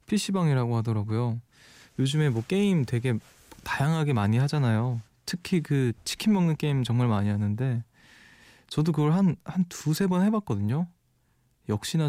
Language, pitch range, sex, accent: Korean, 110-150 Hz, male, native